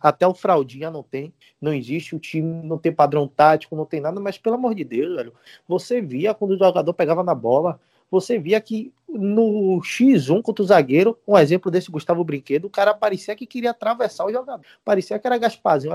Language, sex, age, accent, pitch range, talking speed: Portuguese, male, 20-39, Brazilian, 150-200 Hz, 205 wpm